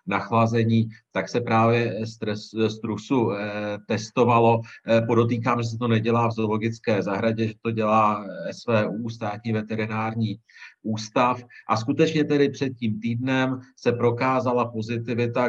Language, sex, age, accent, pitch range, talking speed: Czech, male, 50-69, native, 110-120 Hz, 115 wpm